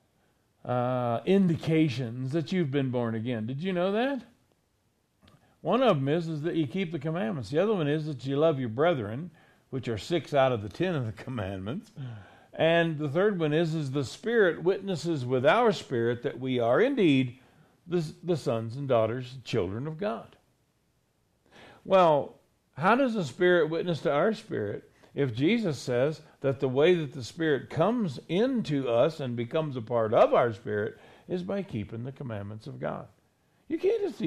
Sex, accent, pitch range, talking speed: male, American, 120-190 Hz, 180 wpm